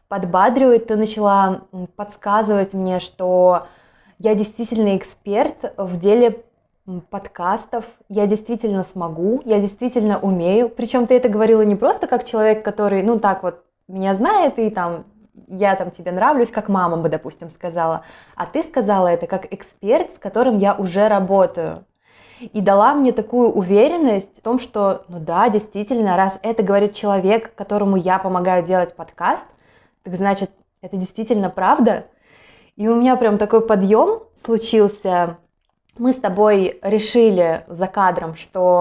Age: 20-39